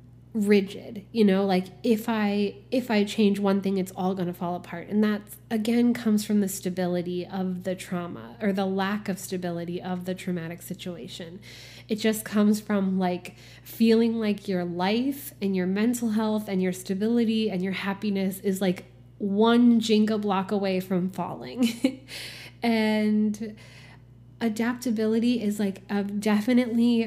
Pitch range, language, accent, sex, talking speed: 185-220 Hz, English, American, female, 155 wpm